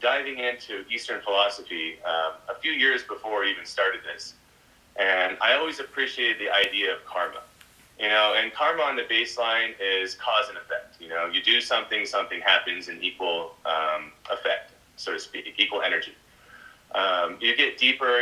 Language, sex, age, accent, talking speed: English, male, 30-49, American, 170 wpm